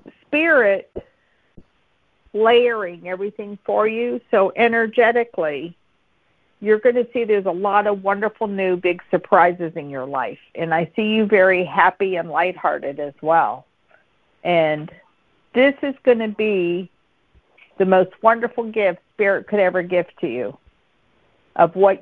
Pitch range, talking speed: 170-210 Hz, 135 wpm